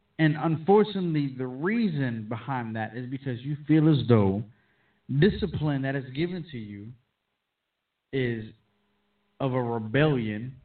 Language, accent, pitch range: English, American, 110-145 Hz